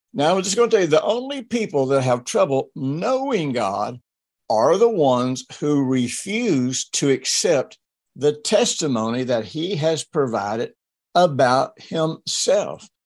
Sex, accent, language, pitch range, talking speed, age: male, American, English, 130-205 Hz, 140 wpm, 60-79